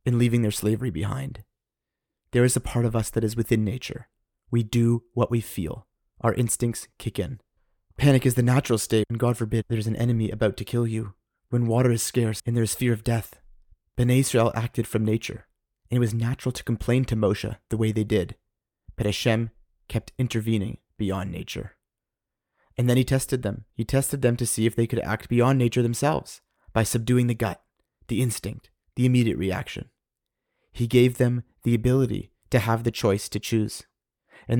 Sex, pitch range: male, 110-125 Hz